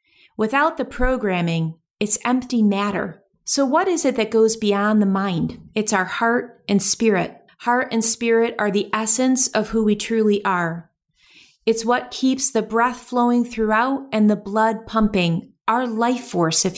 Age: 30-49